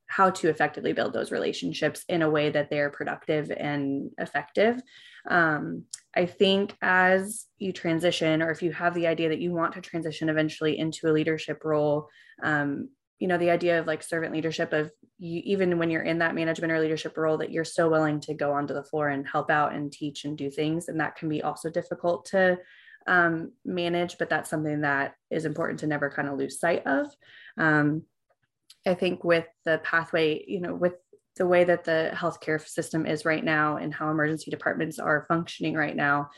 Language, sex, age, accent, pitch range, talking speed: English, female, 20-39, American, 150-170 Hz, 200 wpm